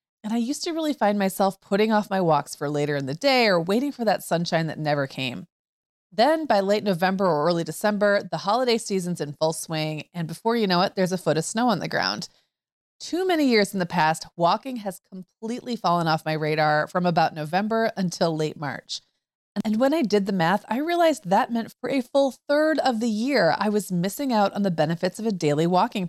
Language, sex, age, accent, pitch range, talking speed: English, female, 30-49, American, 165-225 Hz, 225 wpm